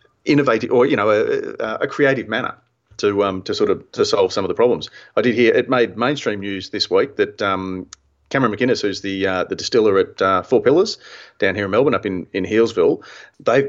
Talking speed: 220 wpm